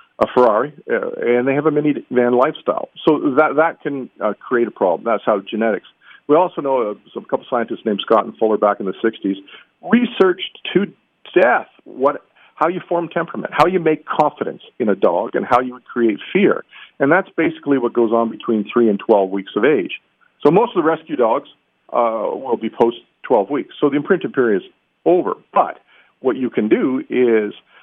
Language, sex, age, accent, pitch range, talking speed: English, male, 50-69, American, 110-155 Hz, 200 wpm